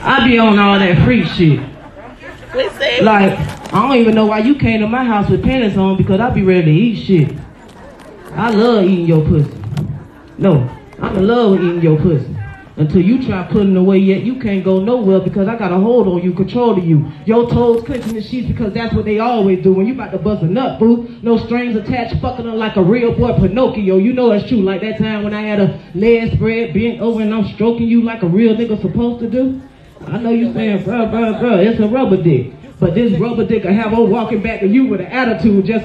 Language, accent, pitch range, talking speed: English, American, 200-270 Hz, 240 wpm